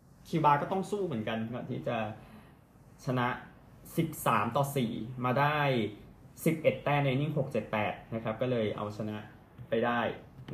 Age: 20-39